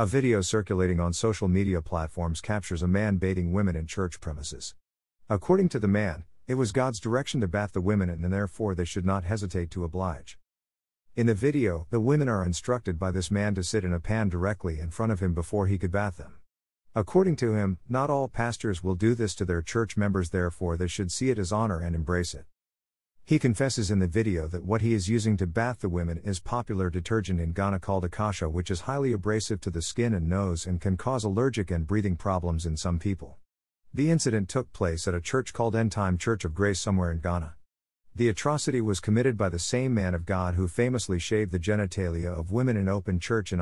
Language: English